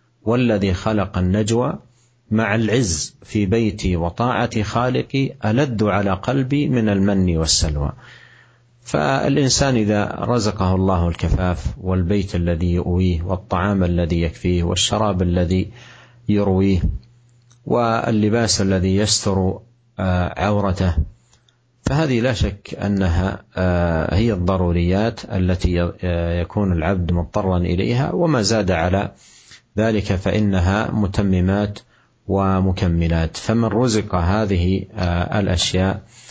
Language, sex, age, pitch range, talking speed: Indonesian, male, 50-69, 90-110 Hz, 90 wpm